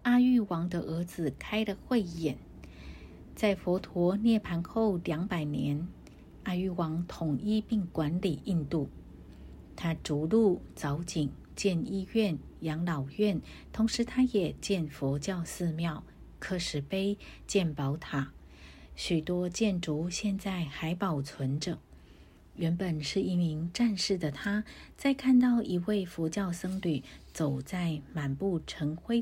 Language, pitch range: Chinese, 150-195 Hz